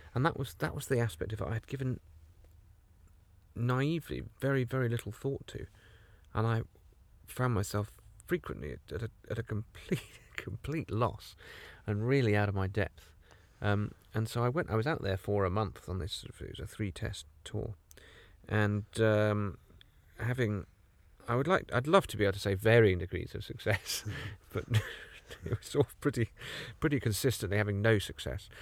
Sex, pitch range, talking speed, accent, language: male, 95-115 Hz, 180 wpm, British, English